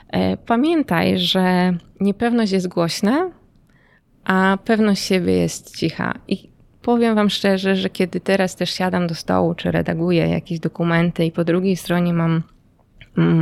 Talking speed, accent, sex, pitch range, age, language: 140 wpm, native, female, 160-195 Hz, 20-39, Polish